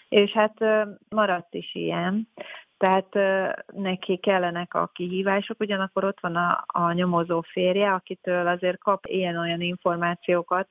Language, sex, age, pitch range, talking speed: Hungarian, female, 30-49, 175-200 Hz, 125 wpm